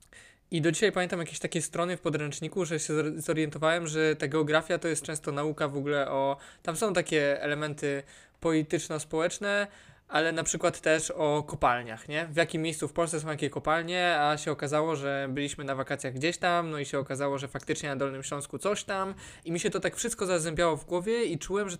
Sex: male